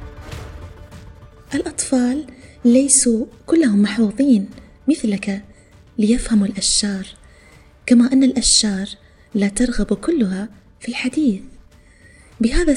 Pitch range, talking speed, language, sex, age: 195-245 Hz, 75 wpm, Arabic, female, 20-39